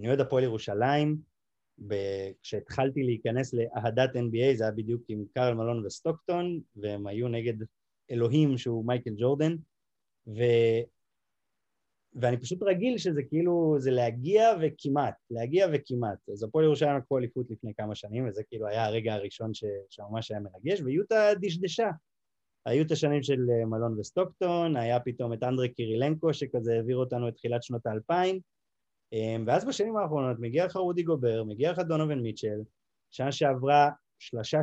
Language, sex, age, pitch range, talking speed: Hebrew, male, 20-39, 115-150 Hz, 145 wpm